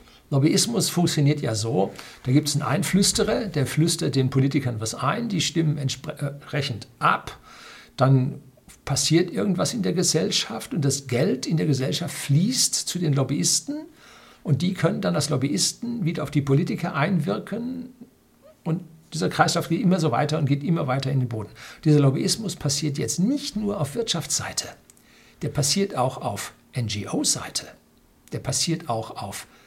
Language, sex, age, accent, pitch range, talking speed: German, male, 60-79, German, 130-165 Hz, 160 wpm